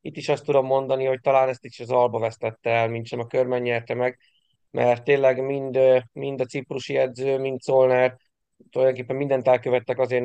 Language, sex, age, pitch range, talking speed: Hungarian, male, 30-49, 125-140 Hz, 185 wpm